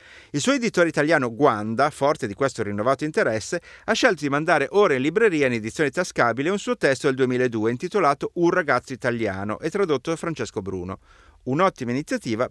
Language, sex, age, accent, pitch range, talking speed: Italian, male, 30-49, native, 115-175 Hz, 175 wpm